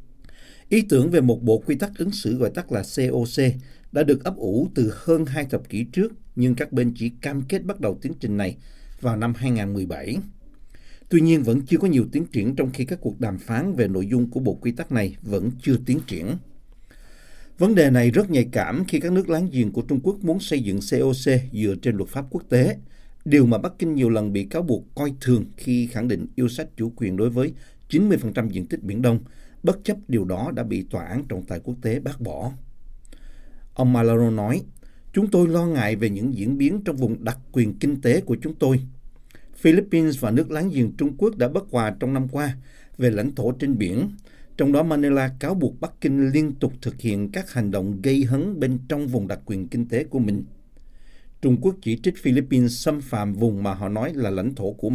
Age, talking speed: 60-79, 225 wpm